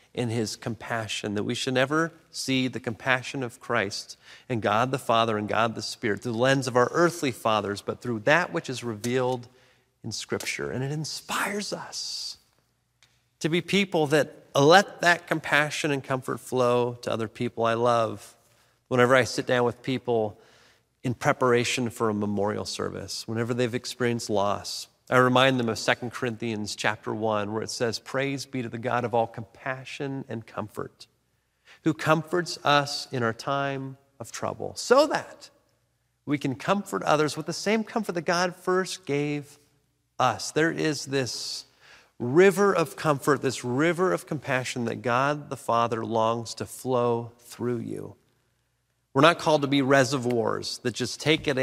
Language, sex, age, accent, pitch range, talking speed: English, male, 40-59, American, 115-145 Hz, 165 wpm